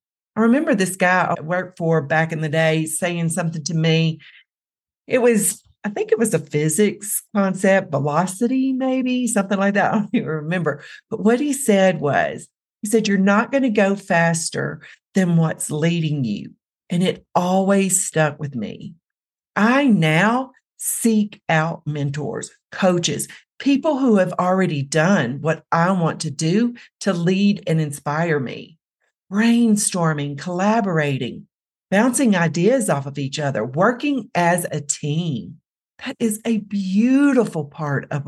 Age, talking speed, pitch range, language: 40-59, 145 wpm, 160-220 Hz, English